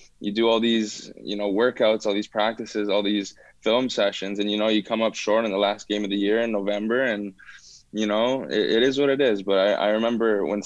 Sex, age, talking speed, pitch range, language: male, 10-29, 250 wpm, 100-115 Hz, English